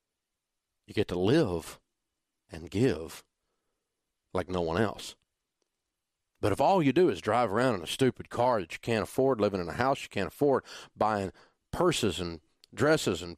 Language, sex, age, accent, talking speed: English, male, 40-59, American, 170 wpm